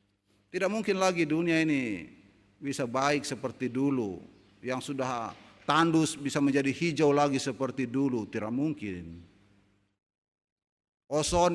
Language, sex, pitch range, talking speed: Indonesian, male, 100-145 Hz, 110 wpm